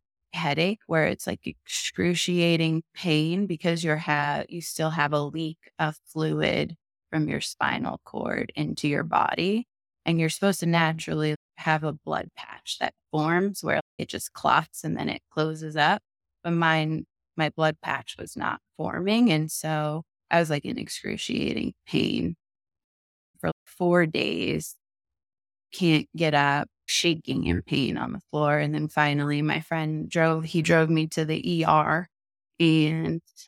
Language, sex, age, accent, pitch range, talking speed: English, female, 20-39, American, 145-160 Hz, 150 wpm